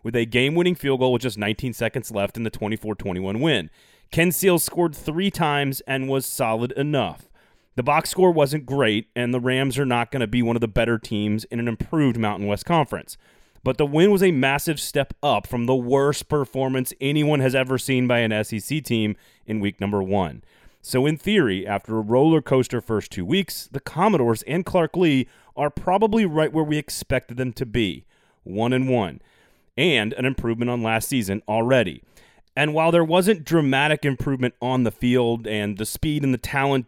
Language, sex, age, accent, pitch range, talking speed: English, male, 30-49, American, 110-145 Hz, 195 wpm